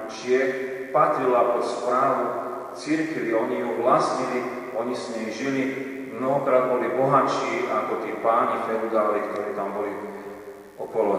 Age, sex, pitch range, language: 40-59, male, 95-130 Hz, Slovak